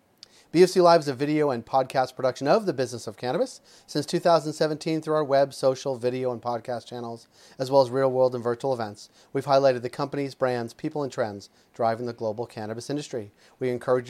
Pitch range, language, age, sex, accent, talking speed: 120-150 Hz, English, 30-49, male, American, 190 wpm